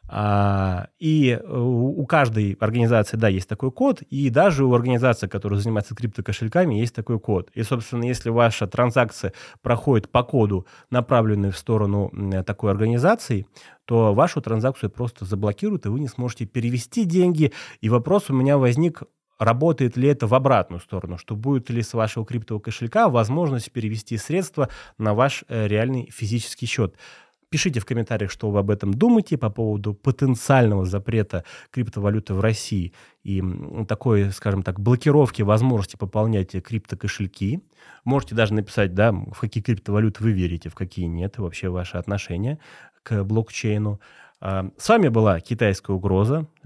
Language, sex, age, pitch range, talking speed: Russian, male, 20-39, 100-125 Hz, 145 wpm